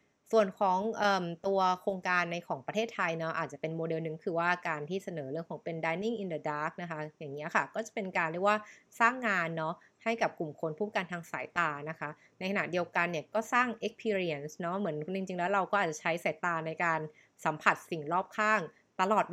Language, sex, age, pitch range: Thai, female, 20-39, 160-200 Hz